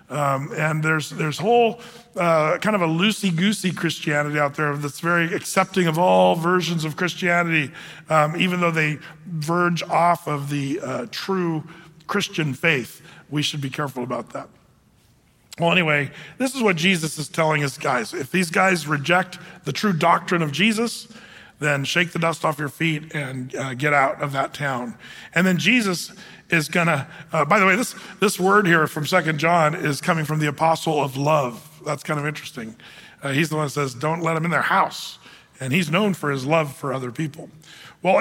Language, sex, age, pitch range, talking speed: English, male, 40-59, 150-180 Hz, 190 wpm